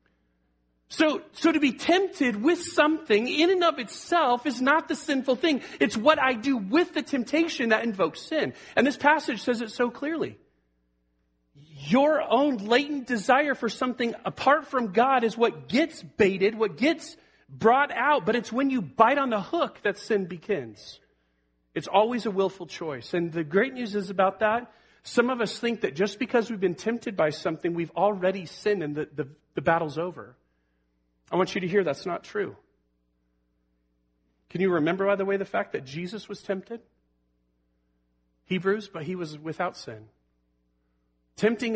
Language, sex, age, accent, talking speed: English, male, 40-59, American, 170 wpm